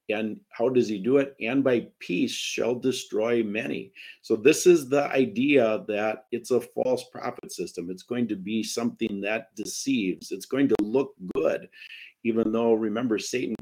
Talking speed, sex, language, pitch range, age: 170 wpm, male, English, 110-180 Hz, 50-69